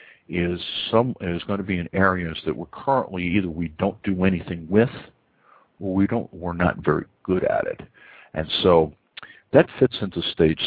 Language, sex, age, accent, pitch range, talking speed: English, male, 60-79, American, 80-95 Hz, 180 wpm